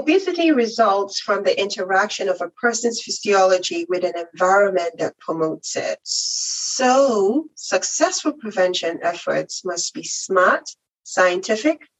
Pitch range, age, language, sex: 175-245 Hz, 40-59, English, female